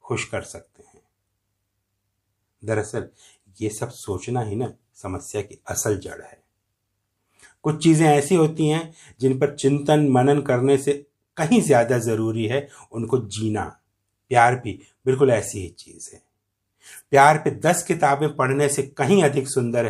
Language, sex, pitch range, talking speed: Hindi, male, 105-140 Hz, 140 wpm